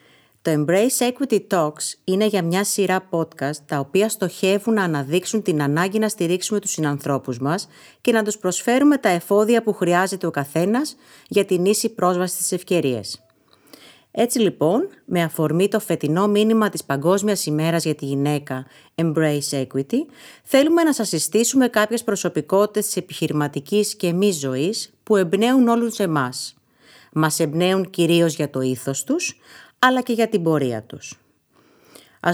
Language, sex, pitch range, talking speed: Greek, female, 150-210 Hz, 145 wpm